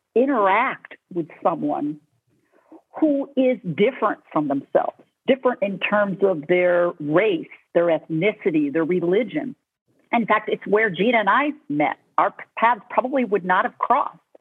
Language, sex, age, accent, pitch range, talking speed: English, female, 50-69, American, 170-265 Hz, 135 wpm